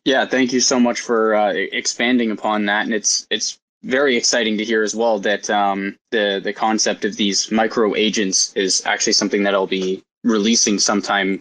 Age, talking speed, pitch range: 20-39, 190 wpm, 100-115 Hz